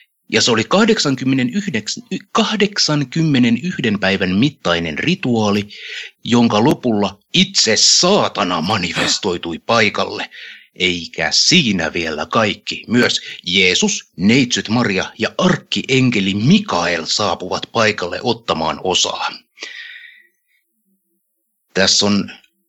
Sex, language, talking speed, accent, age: male, Finnish, 80 wpm, native, 60-79